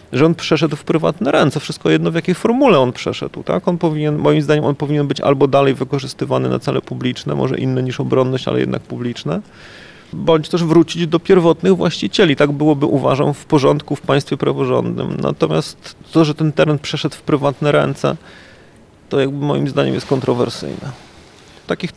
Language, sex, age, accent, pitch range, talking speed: Polish, male, 30-49, native, 135-155 Hz, 175 wpm